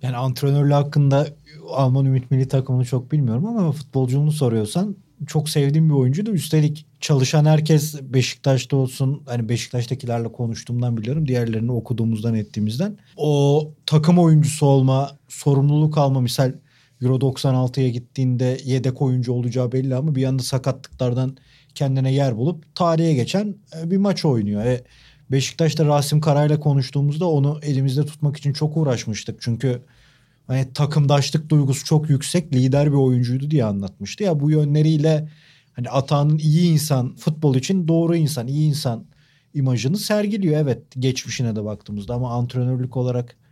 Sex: male